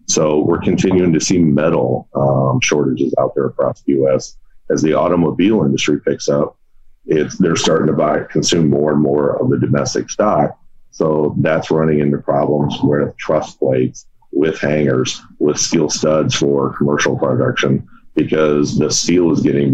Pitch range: 70-80 Hz